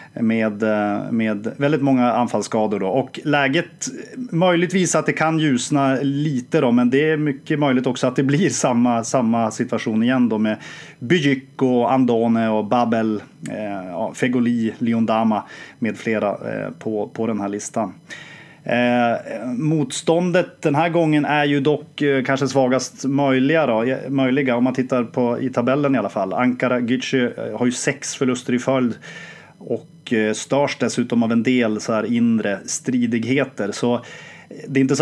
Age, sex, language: 30-49, male, English